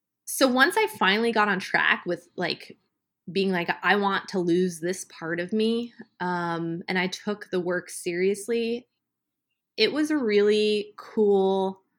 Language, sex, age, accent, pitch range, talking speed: English, female, 20-39, American, 180-220 Hz, 155 wpm